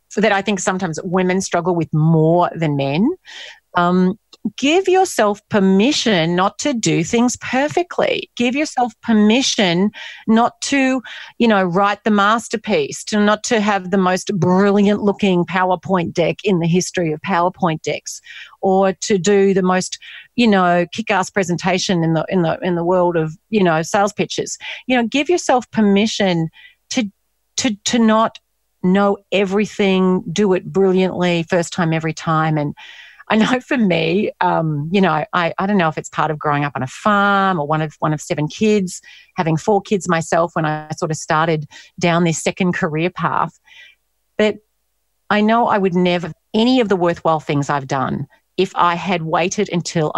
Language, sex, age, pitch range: English, female, 40-59, 165-210 Hz